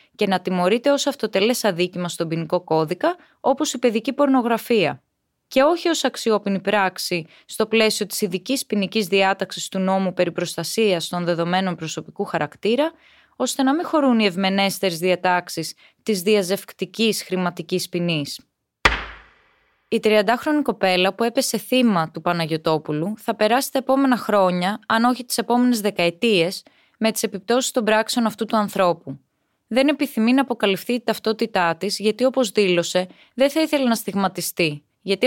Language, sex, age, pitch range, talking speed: Greek, female, 20-39, 180-245 Hz, 145 wpm